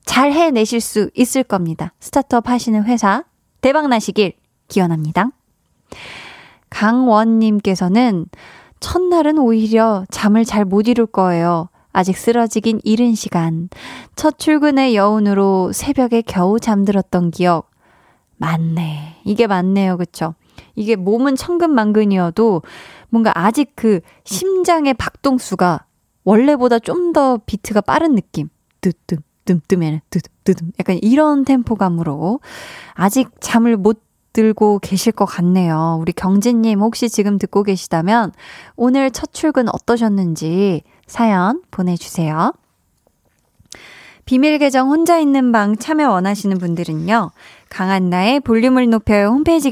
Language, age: Korean, 20-39